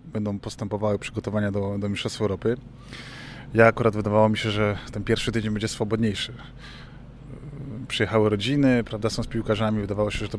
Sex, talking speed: male, 160 wpm